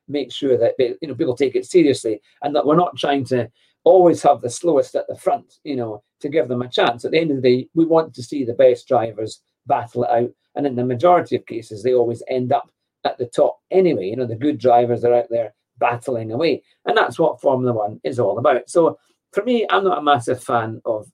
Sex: male